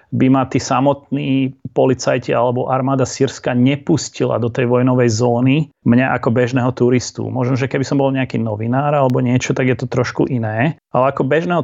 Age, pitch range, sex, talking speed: 30-49, 120-140 Hz, male, 175 wpm